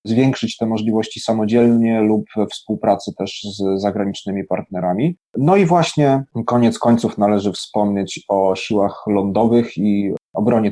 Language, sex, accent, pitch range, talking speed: Polish, male, native, 110-130 Hz, 130 wpm